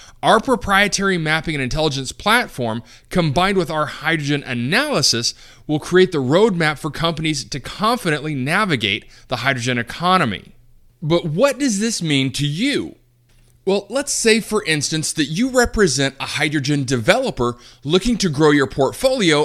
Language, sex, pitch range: English, male, 135-195 Hz